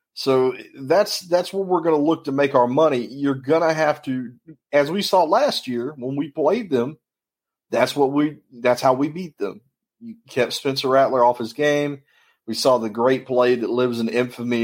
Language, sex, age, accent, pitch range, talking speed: English, male, 30-49, American, 110-135 Hz, 205 wpm